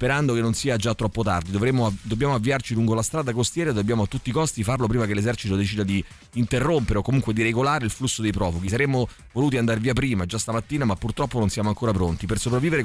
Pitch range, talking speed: 105-130 Hz, 230 wpm